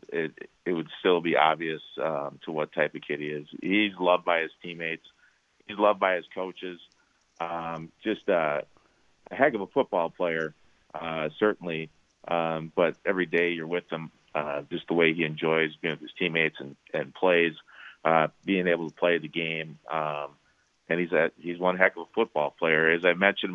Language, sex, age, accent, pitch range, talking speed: English, male, 40-59, American, 80-90 Hz, 195 wpm